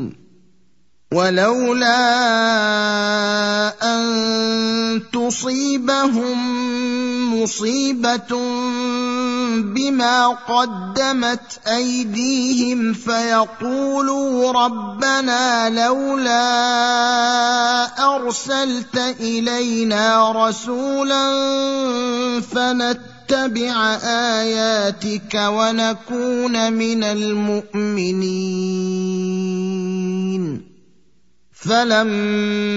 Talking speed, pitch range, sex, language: 35 wpm, 210-245 Hz, male, Arabic